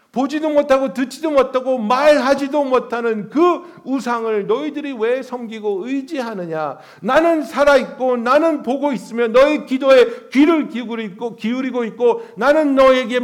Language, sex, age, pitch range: Korean, male, 60-79, 180-270 Hz